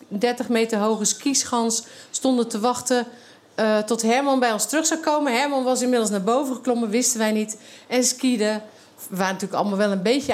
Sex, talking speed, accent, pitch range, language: female, 190 wpm, Dutch, 215-265 Hz, Dutch